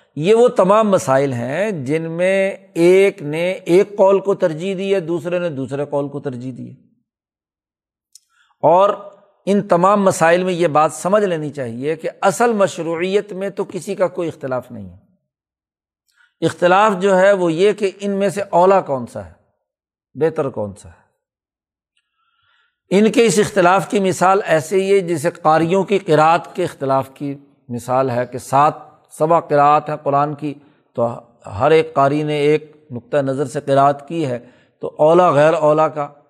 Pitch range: 140-185 Hz